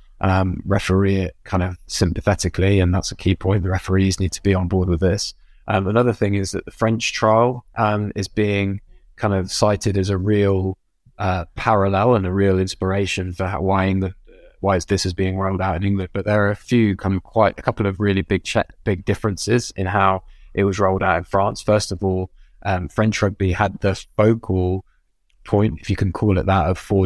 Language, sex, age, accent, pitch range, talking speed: English, male, 20-39, British, 95-105 Hz, 215 wpm